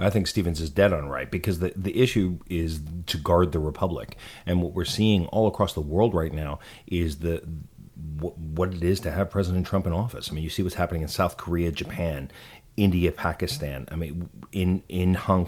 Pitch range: 85-110 Hz